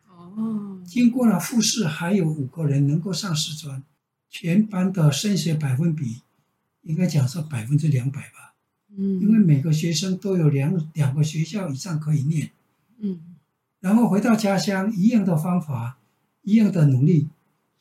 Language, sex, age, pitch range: Chinese, male, 60-79, 150-200 Hz